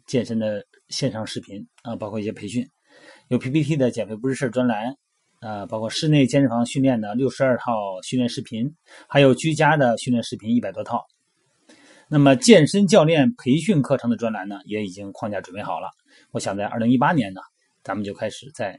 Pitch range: 110-145 Hz